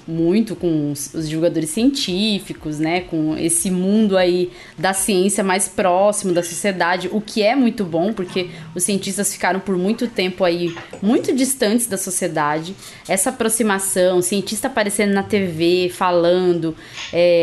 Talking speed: 145 wpm